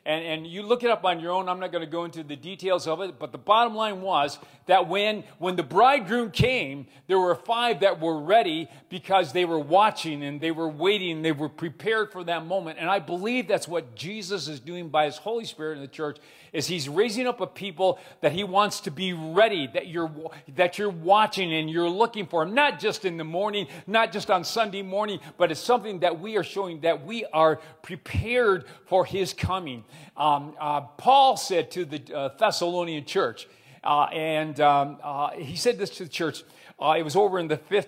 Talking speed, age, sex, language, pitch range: 215 wpm, 40-59, male, English, 160-205 Hz